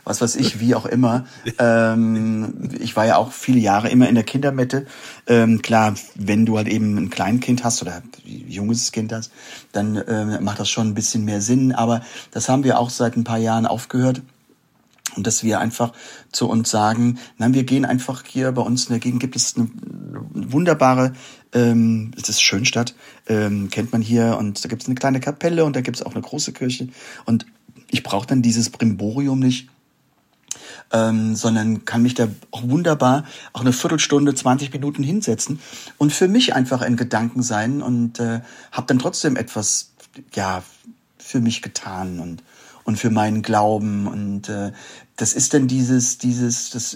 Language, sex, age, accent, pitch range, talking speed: German, male, 40-59, German, 110-130 Hz, 185 wpm